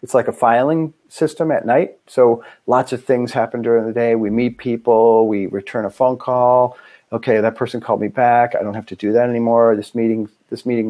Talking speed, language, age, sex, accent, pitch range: 220 wpm, English, 40-59, male, American, 110-130 Hz